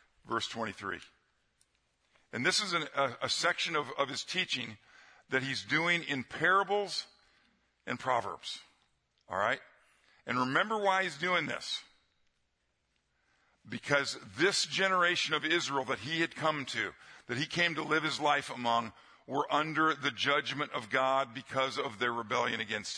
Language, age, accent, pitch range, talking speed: English, 50-69, American, 130-165 Hz, 145 wpm